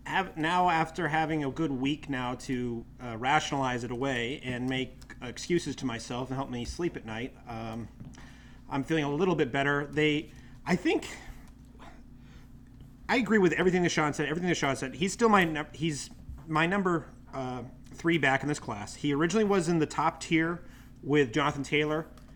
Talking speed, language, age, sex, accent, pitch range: 175 wpm, English, 30-49, male, American, 125-160 Hz